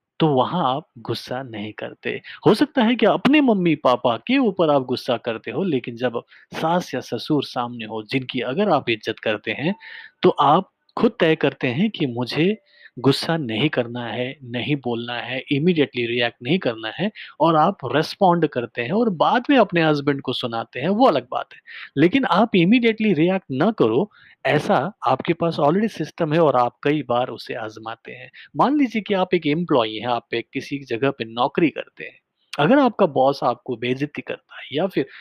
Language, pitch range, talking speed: Hindi, 125-190 Hz, 190 wpm